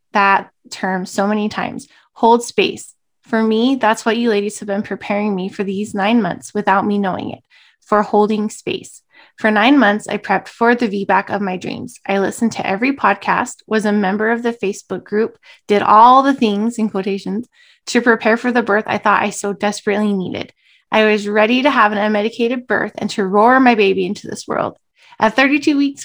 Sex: female